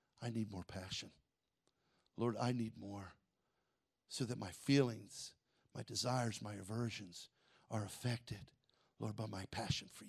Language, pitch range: English, 105-140 Hz